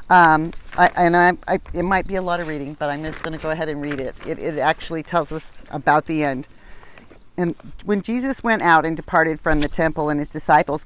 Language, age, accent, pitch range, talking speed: English, 40-59, American, 150-175 Hz, 220 wpm